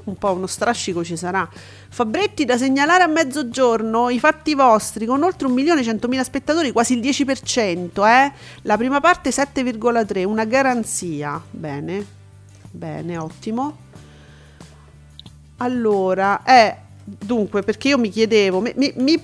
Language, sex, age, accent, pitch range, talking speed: Italian, female, 40-59, native, 185-260 Hz, 130 wpm